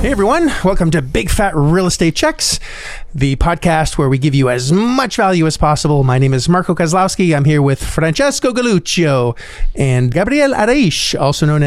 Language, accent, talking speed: English, American, 180 wpm